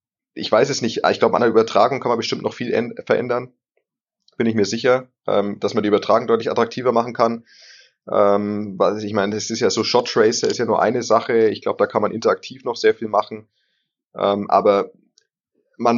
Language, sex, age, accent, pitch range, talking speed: German, male, 20-39, German, 100-115 Hz, 195 wpm